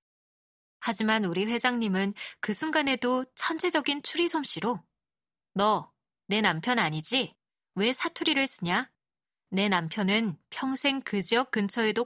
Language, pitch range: Korean, 195-275 Hz